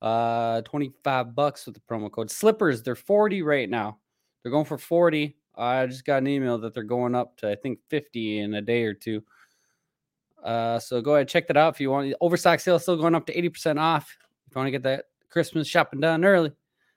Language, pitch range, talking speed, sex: English, 120-155 Hz, 220 wpm, male